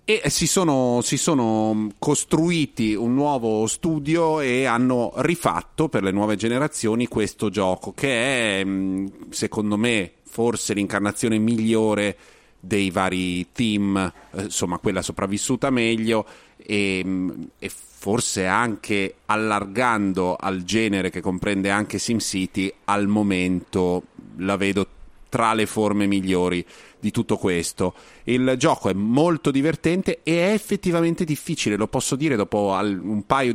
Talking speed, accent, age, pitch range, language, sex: 125 wpm, native, 30-49, 100-130 Hz, Italian, male